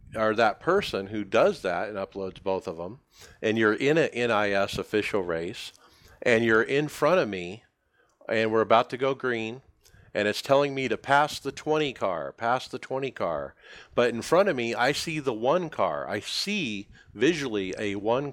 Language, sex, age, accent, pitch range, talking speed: English, male, 50-69, American, 100-125 Hz, 190 wpm